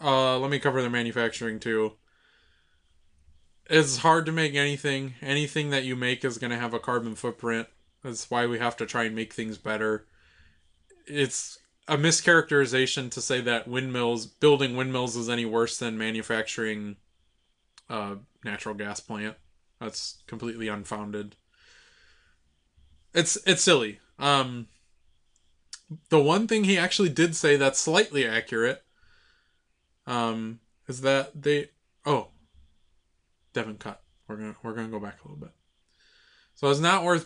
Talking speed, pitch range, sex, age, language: 145 wpm, 110-140 Hz, male, 20-39, English